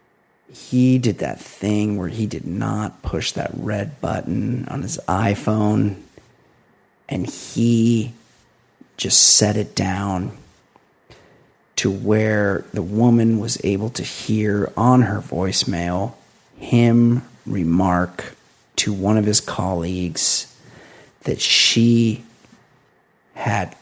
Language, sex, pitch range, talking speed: English, male, 100-125 Hz, 105 wpm